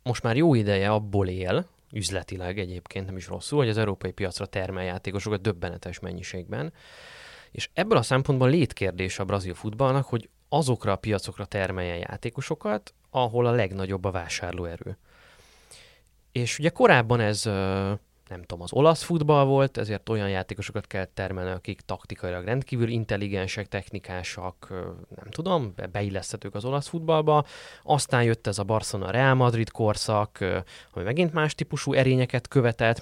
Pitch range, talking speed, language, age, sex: 95-125 Hz, 140 wpm, Hungarian, 20-39, male